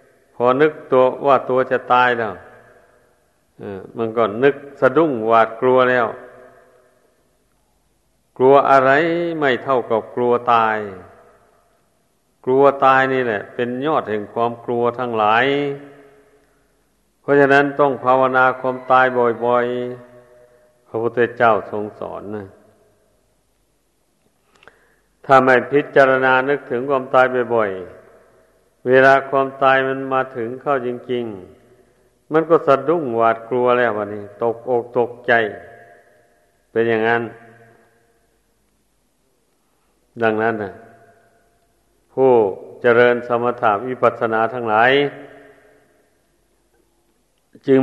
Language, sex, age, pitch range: Thai, male, 60-79, 115-135 Hz